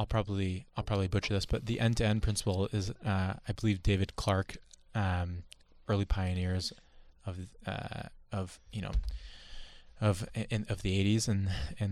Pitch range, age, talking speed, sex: 95-110 Hz, 20-39, 155 wpm, male